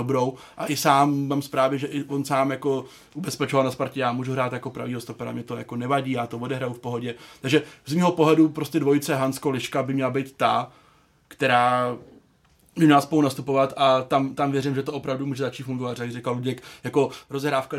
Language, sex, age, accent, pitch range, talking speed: Czech, male, 20-39, native, 130-145 Hz, 195 wpm